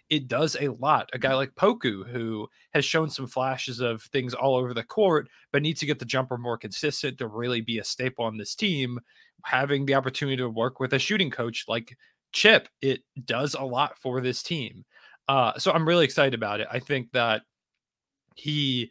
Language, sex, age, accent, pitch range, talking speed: English, male, 20-39, American, 115-140 Hz, 205 wpm